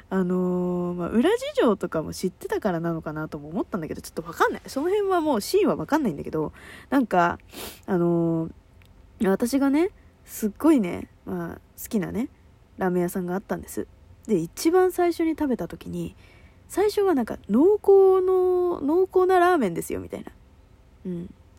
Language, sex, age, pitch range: Japanese, female, 20-39, 175-280 Hz